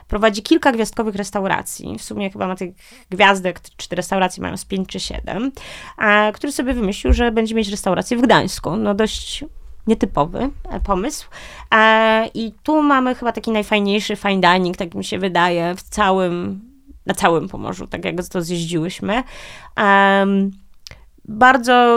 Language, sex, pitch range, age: Polish, female, 190-225 Hz, 30-49